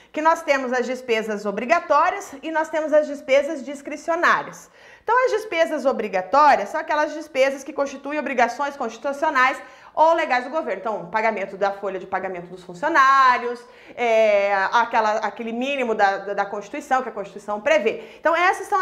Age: 30-49